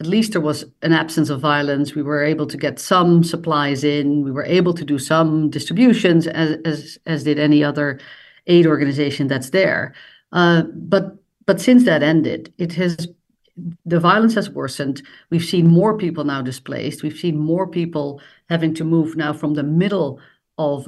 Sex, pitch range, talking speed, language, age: female, 145-170 Hz, 180 wpm, English, 50-69